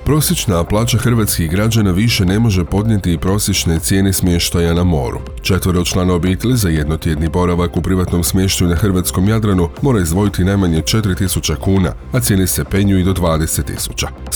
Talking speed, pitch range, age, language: 165 wpm, 85-100 Hz, 40-59, Croatian